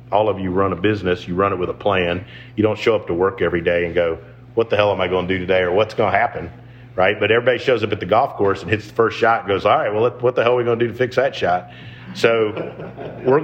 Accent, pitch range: American, 95-120 Hz